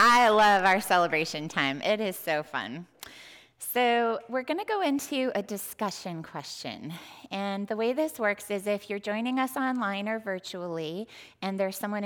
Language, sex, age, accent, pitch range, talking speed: English, female, 20-39, American, 170-220 Hz, 170 wpm